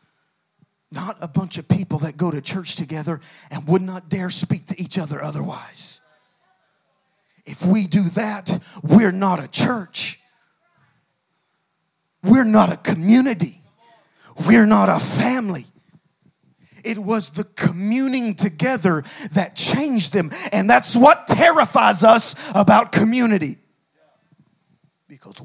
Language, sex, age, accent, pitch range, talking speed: English, male, 40-59, American, 165-220 Hz, 120 wpm